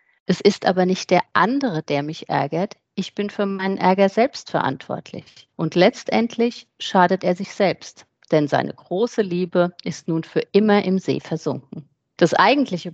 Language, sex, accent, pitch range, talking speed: German, female, German, 155-190 Hz, 160 wpm